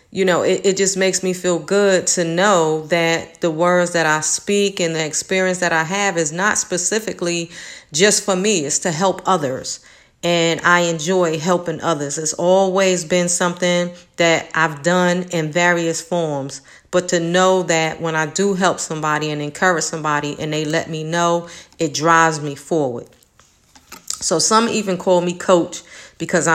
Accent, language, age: American, English, 40-59